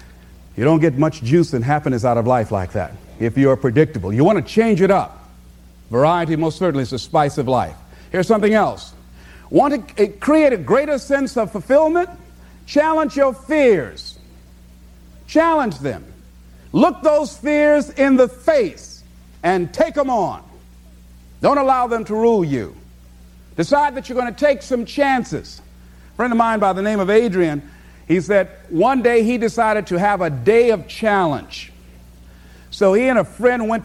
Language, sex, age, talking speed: English, male, 50-69, 170 wpm